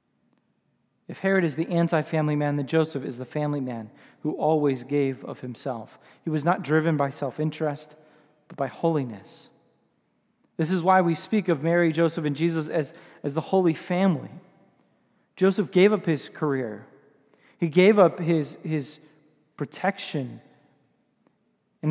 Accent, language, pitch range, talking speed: American, English, 160-230 Hz, 145 wpm